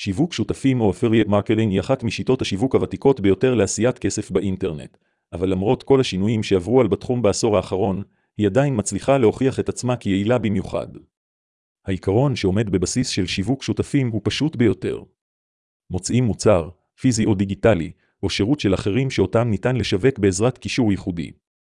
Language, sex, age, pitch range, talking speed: Hebrew, male, 40-59, 95-125 Hz, 150 wpm